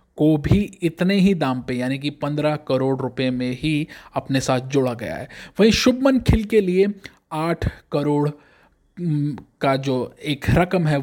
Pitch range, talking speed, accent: 140-185 Hz, 165 wpm, native